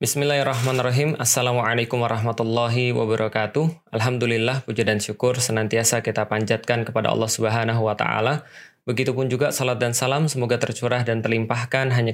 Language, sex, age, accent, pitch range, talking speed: Indonesian, male, 20-39, native, 115-130 Hz, 130 wpm